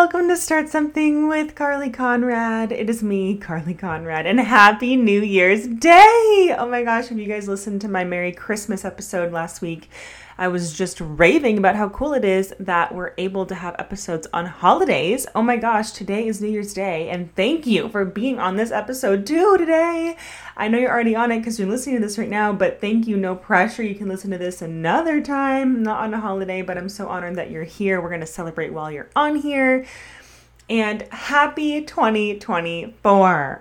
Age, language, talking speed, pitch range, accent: 20-39, English, 200 wpm, 160-230 Hz, American